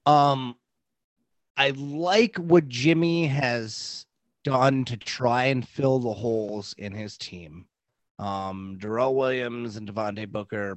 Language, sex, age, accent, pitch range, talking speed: English, male, 30-49, American, 105-135 Hz, 130 wpm